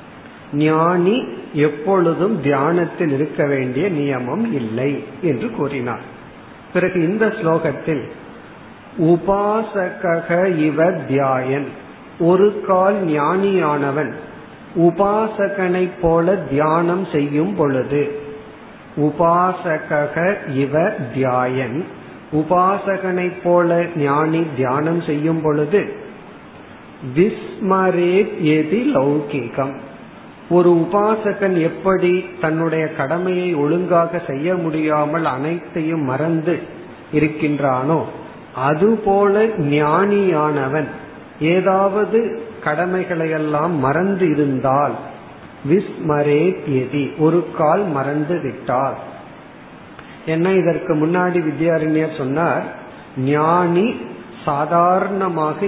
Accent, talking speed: native, 50 wpm